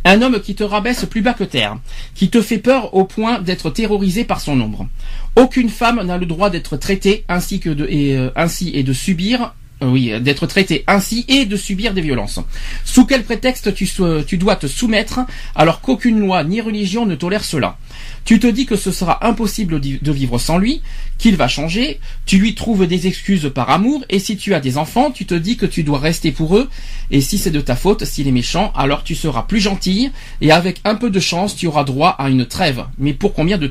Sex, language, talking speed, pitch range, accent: male, French, 225 wpm, 150-210 Hz, French